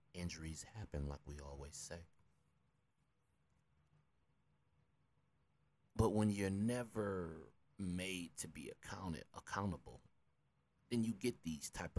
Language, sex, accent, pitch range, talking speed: English, male, American, 75-95 Hz, 95 wpm